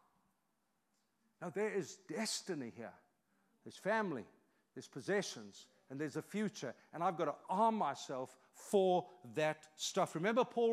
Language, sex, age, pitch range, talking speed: English, male, 50-69, 175-230 Hz, 135 wpm